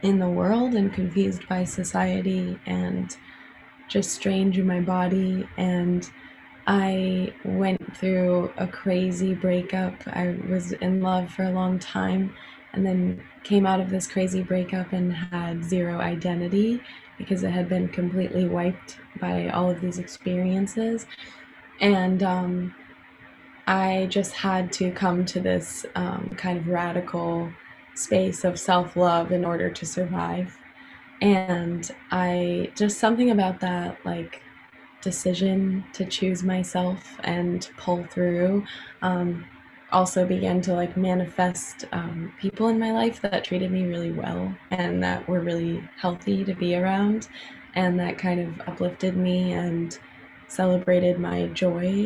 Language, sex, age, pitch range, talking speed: English, female, 20-39, 175-190 Hz, 135 wpm